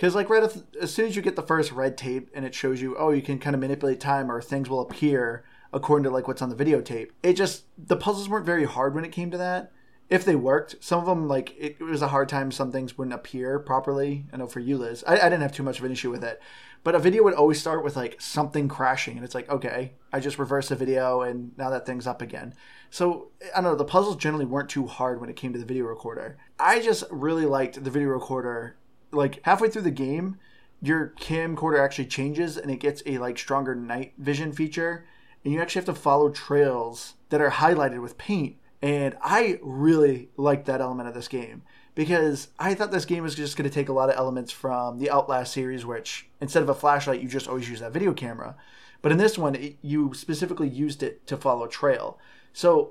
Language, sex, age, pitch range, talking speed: English, male, 20-39, 130-160 Hz, 235 wpm